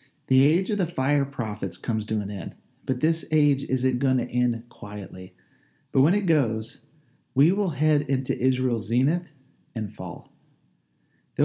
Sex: male